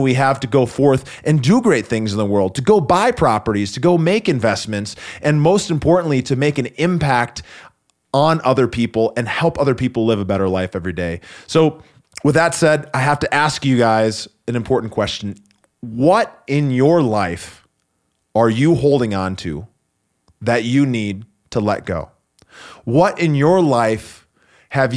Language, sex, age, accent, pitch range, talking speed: English, male, 30-49, American, 105-150 Hz, 175 wpm